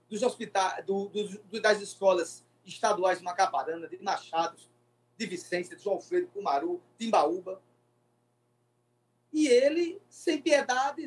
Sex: male